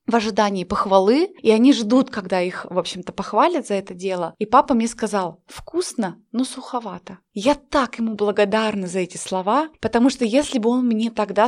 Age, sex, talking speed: 20-39, female, 185 wpm